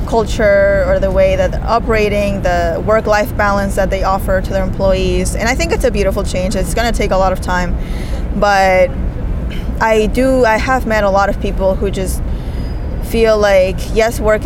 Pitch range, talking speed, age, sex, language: 185-210 Hz, 195 wpm, 20-39, female, English